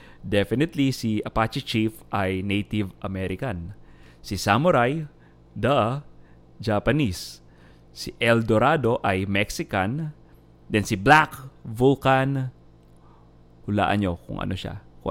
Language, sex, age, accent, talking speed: English, male, 20-39, Filipino, 105 wpm